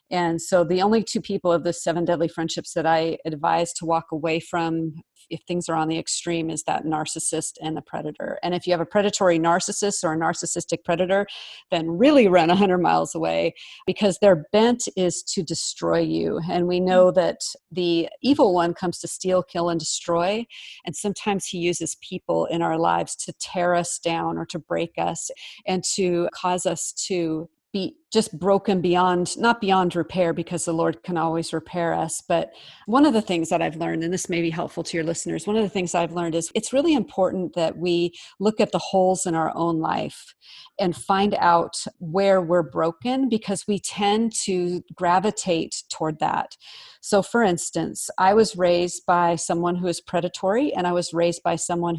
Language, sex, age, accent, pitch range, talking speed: English, female, 40-59, American, 165-195 Hz, 195 wpm